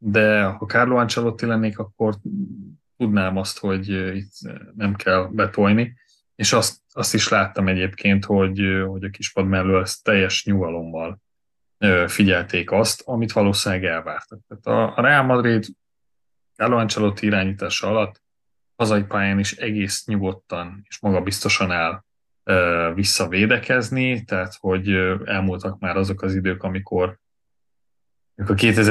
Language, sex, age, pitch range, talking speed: Hungarian, male, 30-49, 95-110 Hz, 120 wpm